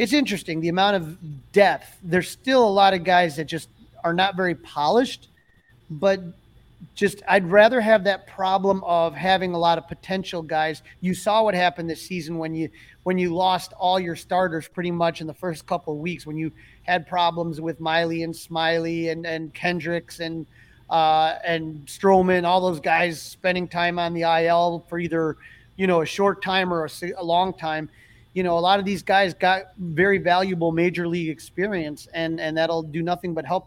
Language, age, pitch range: English, 30-49, 160-180 Hz